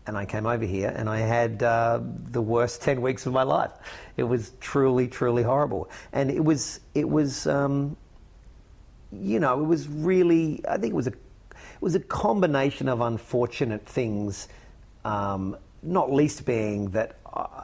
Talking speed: 165 wpm